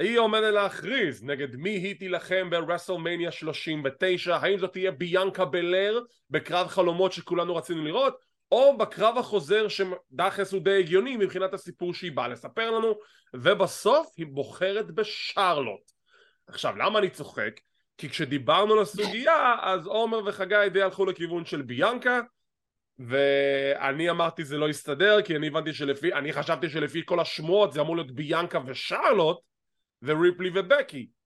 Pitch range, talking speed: 165-215 Hz, 125 wpm